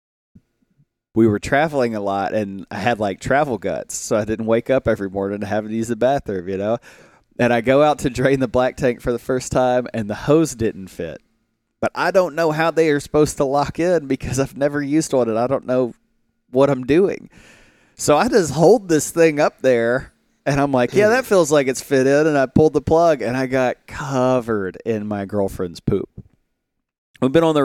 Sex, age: male, 30-49